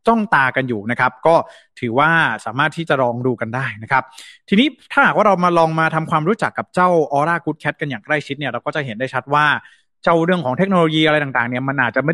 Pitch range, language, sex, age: 130-170 Hz, Thai, male, 20-39